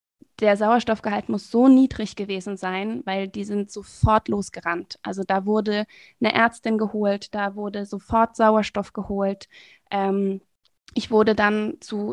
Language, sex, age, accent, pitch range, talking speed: German, female, 20-39, German, 200-230 Hz, 140 wpm